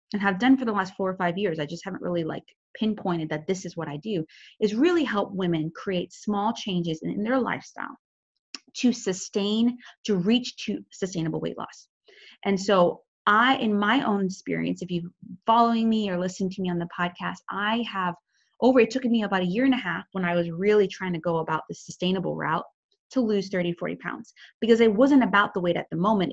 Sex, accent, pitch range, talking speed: female, American, 175-220 Hz, 220 wpm